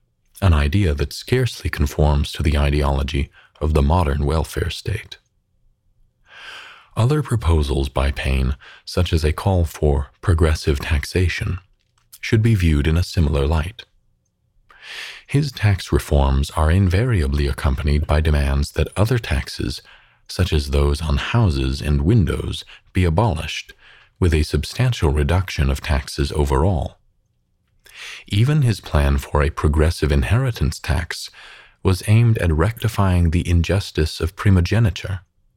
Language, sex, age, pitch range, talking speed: English, male, 40-59, 75-100 Hz, 125 wpm